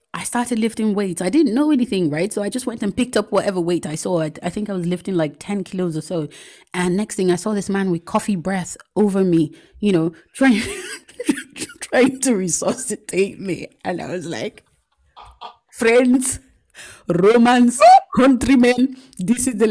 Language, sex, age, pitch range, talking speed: English, female, 20-39, 165-245 Hz, 185 wpm